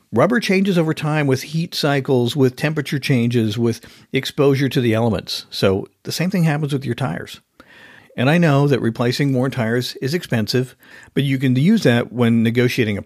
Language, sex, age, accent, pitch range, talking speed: English, male, 50-69, American, 115-145 Hz, 185 wpm